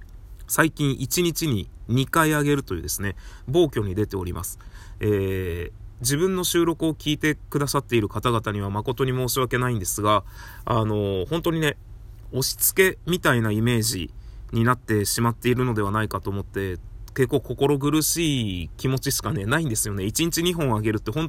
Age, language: 20-39, Japanese